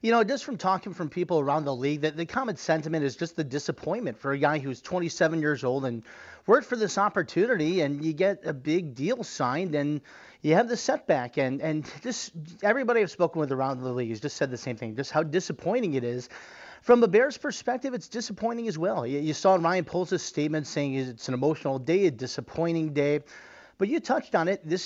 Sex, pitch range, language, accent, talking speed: male, 145-190 Hz, English, American, 215 wpm